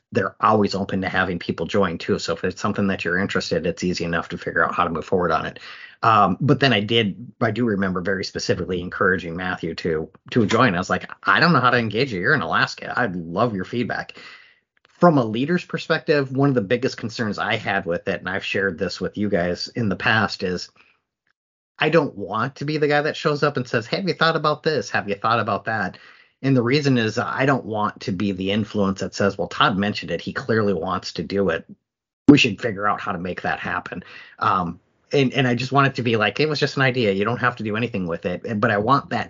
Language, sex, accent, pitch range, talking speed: English, male, American, 95-125 Hz, 250 wpm